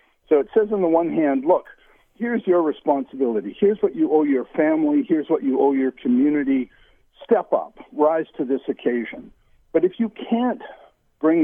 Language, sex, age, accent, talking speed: English, male, 60-79, American, 180 wpm